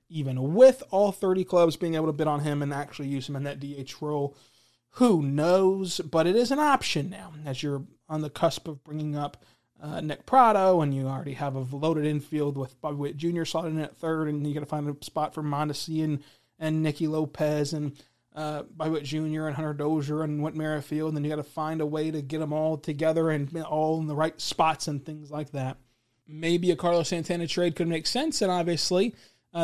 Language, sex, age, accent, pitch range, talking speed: English, male, 20-39, American, 145-165 Hz, 225 wpm